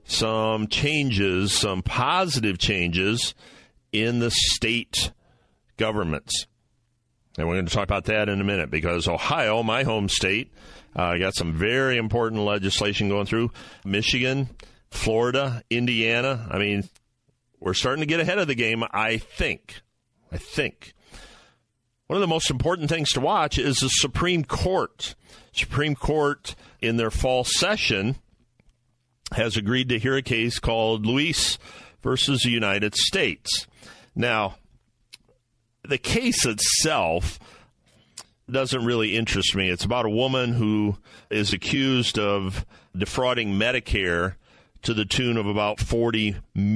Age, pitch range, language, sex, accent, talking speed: 50-69, 100-125 Hz, English, male, American, 130 wpm